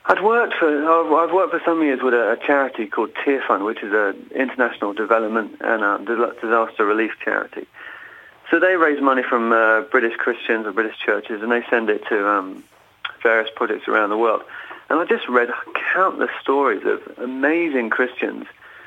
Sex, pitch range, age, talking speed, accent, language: male, 110-140 Hz, 40-59, 175 wpm, British, English